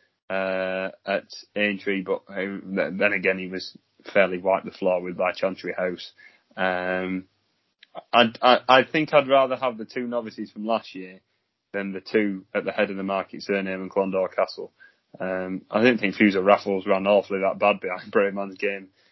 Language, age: English, 20-39